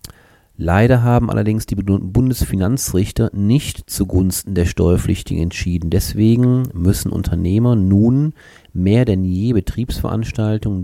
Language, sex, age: German, male, 40-59